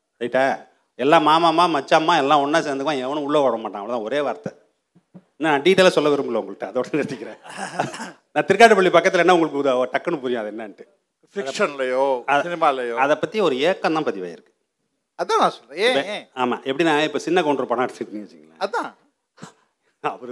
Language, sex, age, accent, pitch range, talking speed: Tamil, male, 30-49, native, 105-145 Hz, 90 wpm